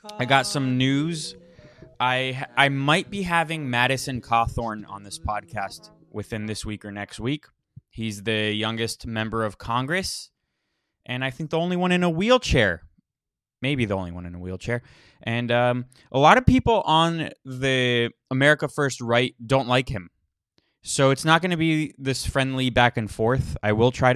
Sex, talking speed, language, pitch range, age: male, 175 wpm, English, 110-145 Hz, 20-39